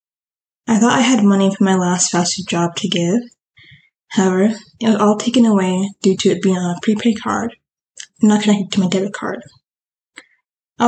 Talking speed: 190 wpm